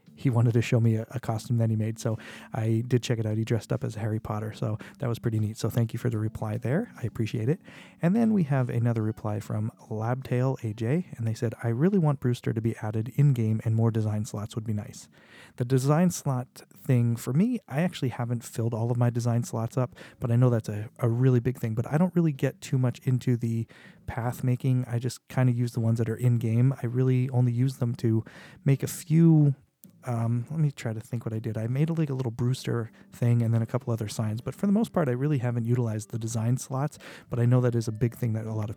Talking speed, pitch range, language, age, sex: 255 wpm, 115-135 Hz, English, 30-49, male